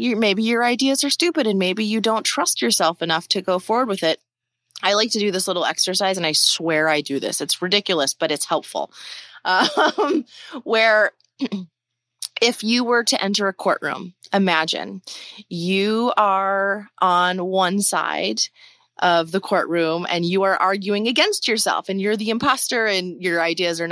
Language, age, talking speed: English, 30-49, 170 wpm